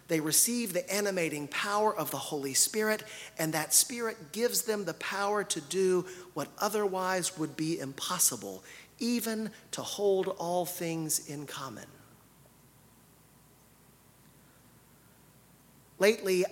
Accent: American